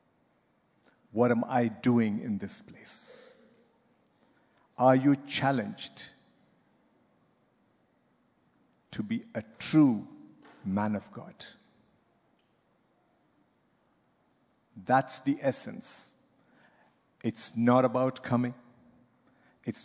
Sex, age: male, 50-69